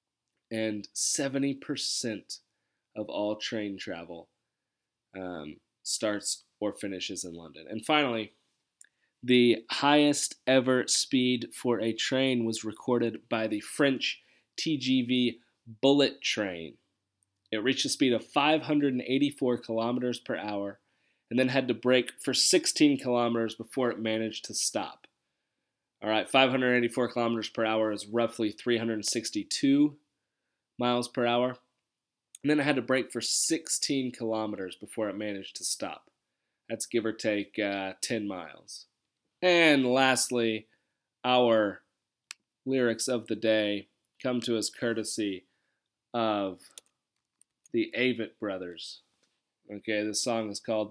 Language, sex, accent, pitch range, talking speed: English, male, American, 105-125 Hz, 125 wpm